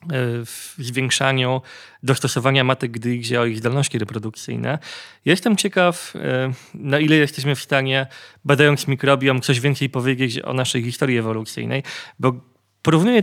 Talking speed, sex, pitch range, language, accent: 120 wpm, male, 120-140 Hz, Polish, native